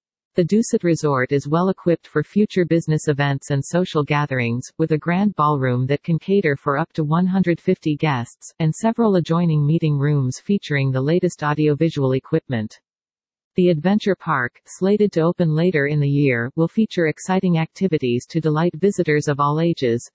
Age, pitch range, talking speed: 40-59, 145-175 Hz, 165 wpm